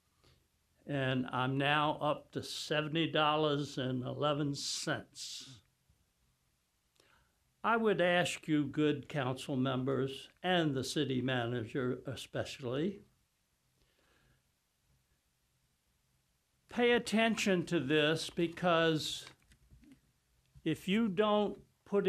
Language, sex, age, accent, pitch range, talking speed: English, male, 60-79, American, 135-180 Hz, 85 wpm